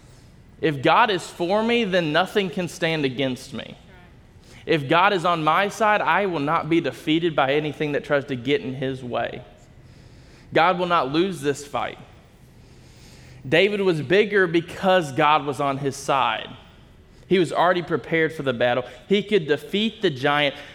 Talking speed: 170 wpm